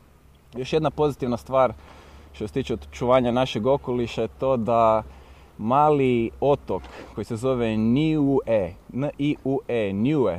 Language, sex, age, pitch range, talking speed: Croatian, male, 20-39, 110-135 Hz, 125 wpm